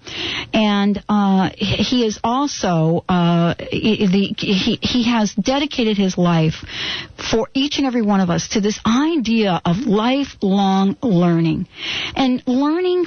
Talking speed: 130 wpm